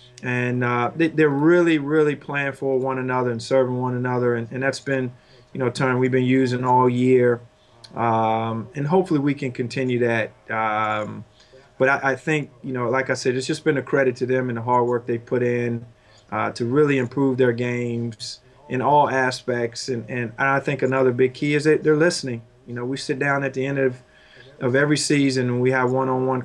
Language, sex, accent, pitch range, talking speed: English, male, American, 120-135 Hz, 210 wpm